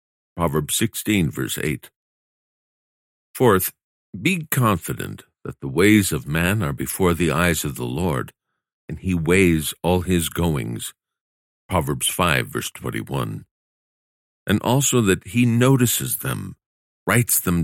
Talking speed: 125 wpm